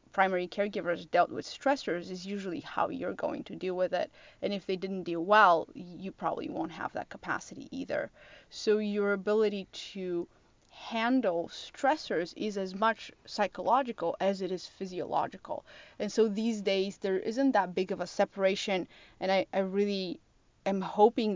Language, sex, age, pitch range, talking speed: English, female, 20-39, 185-215 Hz, 165 wpm